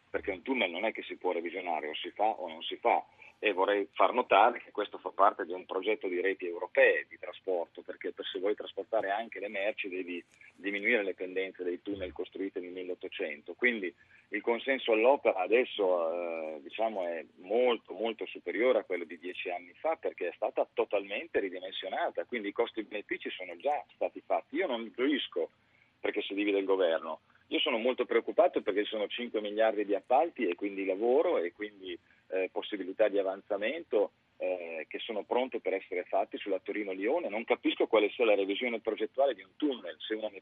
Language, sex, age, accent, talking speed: Italian, male, 40-59, native, 190 wpm